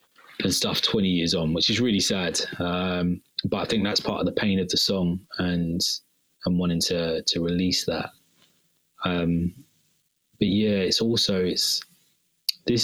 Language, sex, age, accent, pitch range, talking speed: English, male, 20-39, British, 85-100 Hz, 165 wpm